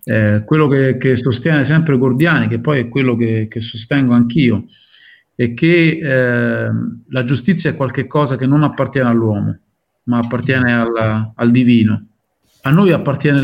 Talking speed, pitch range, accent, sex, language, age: 150 wpm, 115-145 Hz, native, male, Italian, 50-69